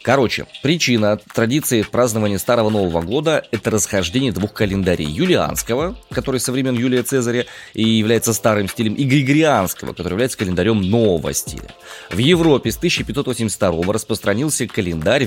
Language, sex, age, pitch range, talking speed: Russian, male, 20-39, 90-125 Hz, 140 wpm